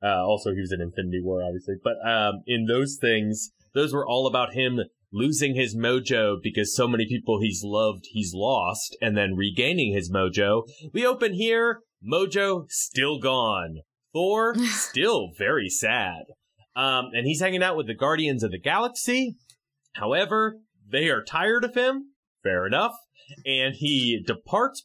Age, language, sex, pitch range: 30-49, English, male, 115-190 Hz